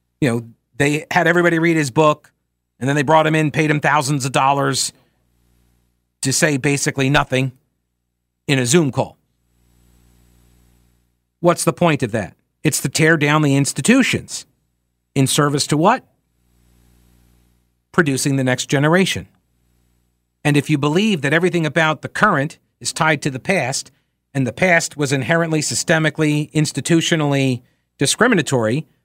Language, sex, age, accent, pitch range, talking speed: English, male, 50-69, American, 100-160 Hz, 140 wpm